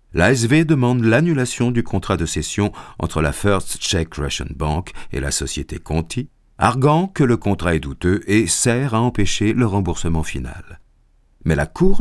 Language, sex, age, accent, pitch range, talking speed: French, male, 50-69, French, 80-110 Hz, 165 wpm